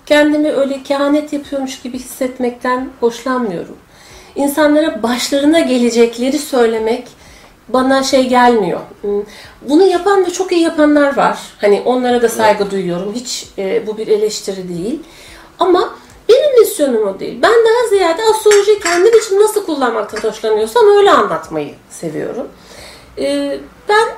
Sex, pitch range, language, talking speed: female, 235-375 Hz, Turkish, 120 wpm